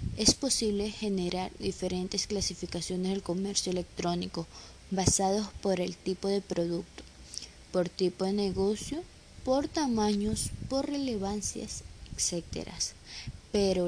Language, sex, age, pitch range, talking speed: Spanish, female, 20-39, 180-210 Hz, 105 wpm